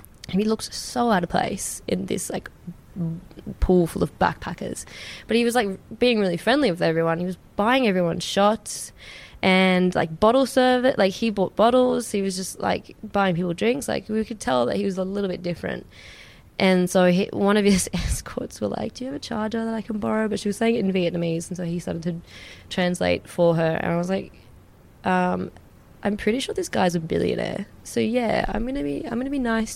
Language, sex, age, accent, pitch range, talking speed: English, female, 20-39, Australian, 170-215 Hz, 220 wpm